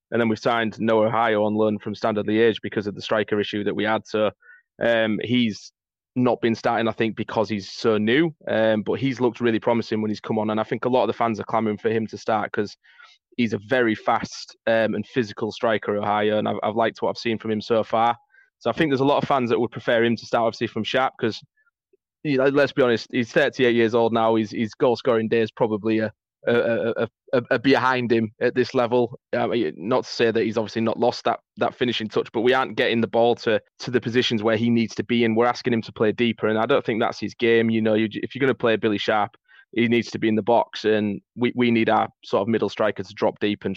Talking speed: 265 wpm